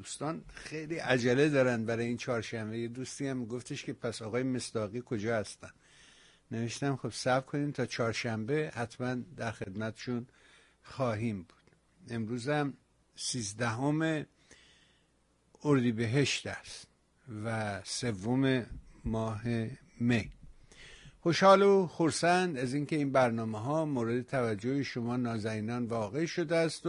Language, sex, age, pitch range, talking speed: Persian, male, 60-79, 115-145 Hz, 115 wpm